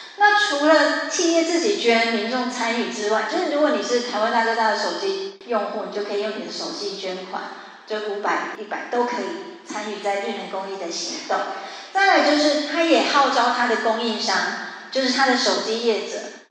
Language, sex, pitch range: Chinese, female, 200-260 Hz